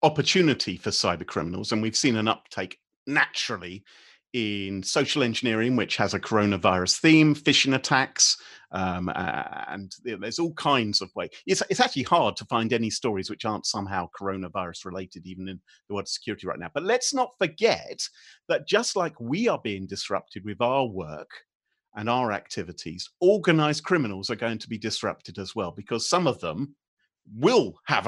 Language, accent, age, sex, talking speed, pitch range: English, British, 40-59, male, 170 wpm, 100-135 Hz